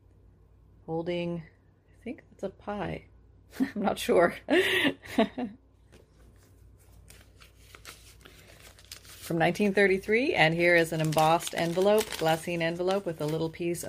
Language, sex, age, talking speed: English, female, 30-49, 100 wpm